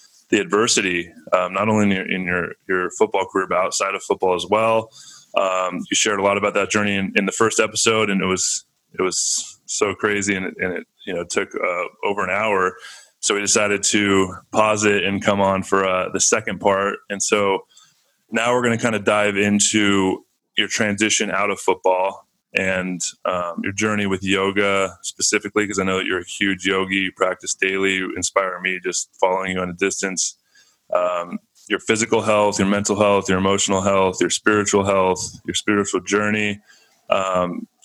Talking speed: 195 wpm